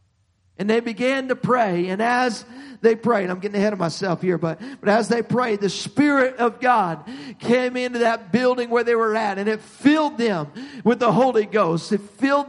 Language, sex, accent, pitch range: English, male, American, 135-210 Hz